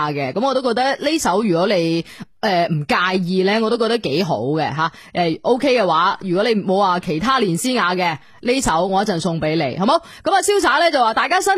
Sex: female